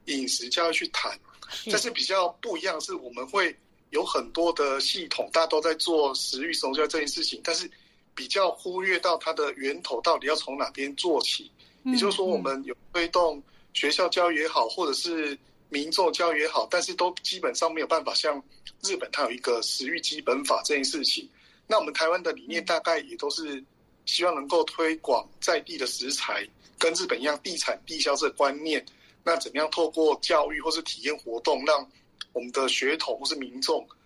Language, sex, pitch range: Chinese, male, 150-225 Hz